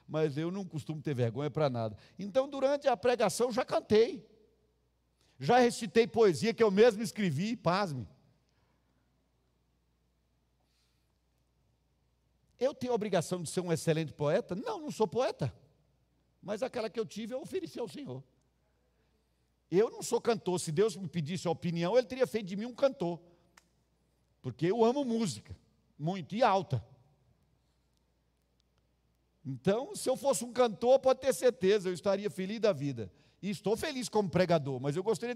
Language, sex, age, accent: Portuguese, male, 50-69, Brazilian